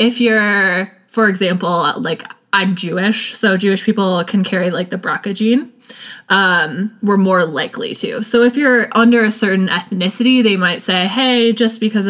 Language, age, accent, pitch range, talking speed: English, 20-39, American, 190-230 Hz, 170 wpm